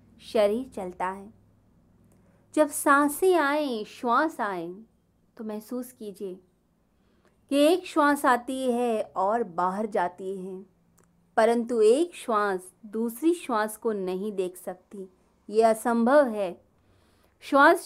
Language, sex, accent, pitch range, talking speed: Hindi, female, native, 205-280 Hz, 110 wpm